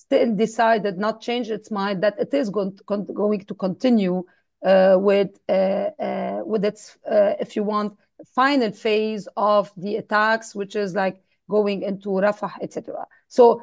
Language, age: English, 40-59